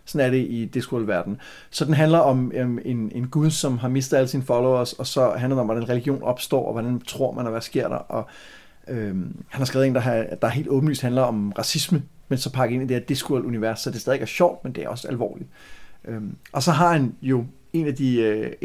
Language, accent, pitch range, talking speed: Danish, native, 120-150 Hz, 250 wpm